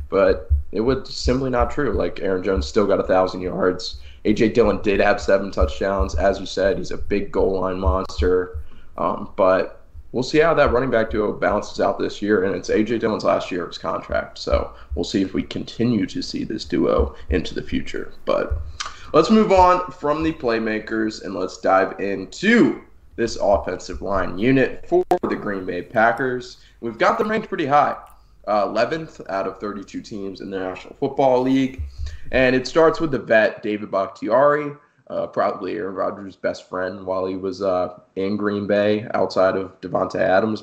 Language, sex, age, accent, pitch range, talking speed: English, male, 20-39, American, 95-130 Hz, 180 wpm